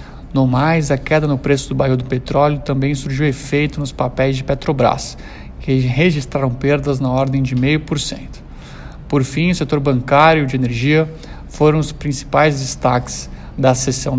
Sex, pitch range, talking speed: male, 130-150 Hz, 160 wpm